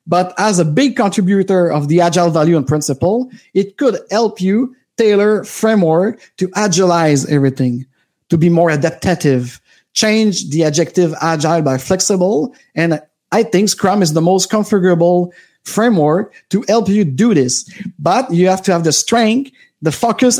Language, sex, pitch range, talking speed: English, male, 155-205 Hz, 155 wpm